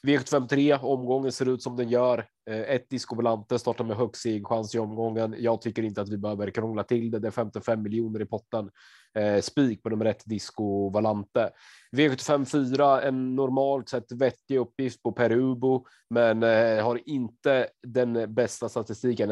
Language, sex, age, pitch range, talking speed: Swedish, male, 30-49, 105-125 Hz, 160 wpm